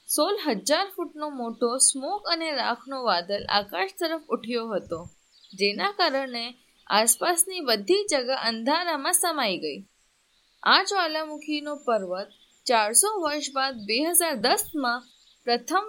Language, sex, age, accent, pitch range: Gujarati, female, 20-39, native, 230-335 Hz